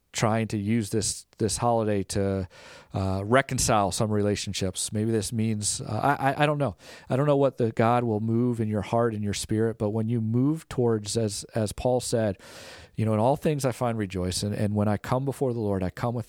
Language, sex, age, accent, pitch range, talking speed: English, male, 40-59, American, 100-125 Hz, 220 wpm